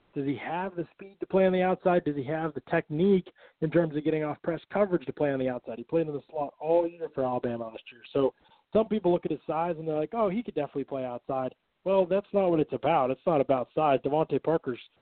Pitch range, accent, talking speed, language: 130-155 Hz, American, 265 wpm, English